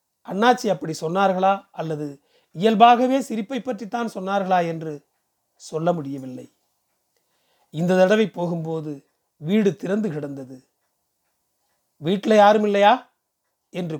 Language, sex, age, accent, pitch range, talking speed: Tamil, male, 40-59, native, 160-220 Hz, 90 wpm